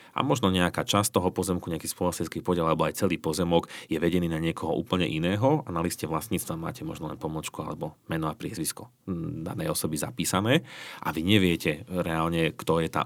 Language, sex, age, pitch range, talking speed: Slovak, male, 30-49, 80-90 Hz, 190 wpm